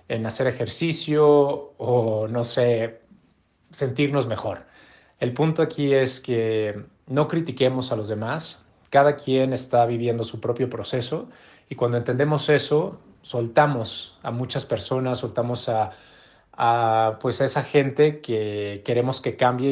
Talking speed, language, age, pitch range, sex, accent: 135 wpm, Spanish, 30-49, 110-130 Hz, male, Mexican